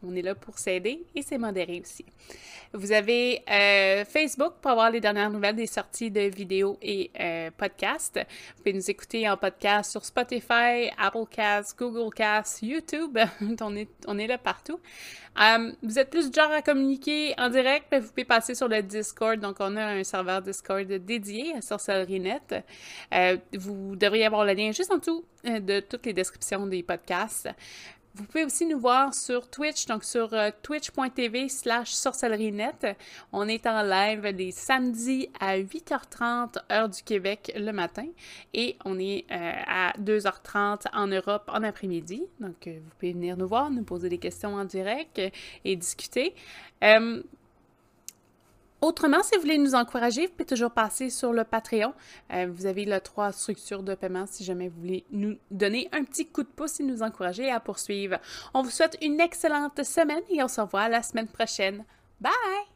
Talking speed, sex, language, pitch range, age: 170 wpm, female, French, 195-260 Hz, 30-49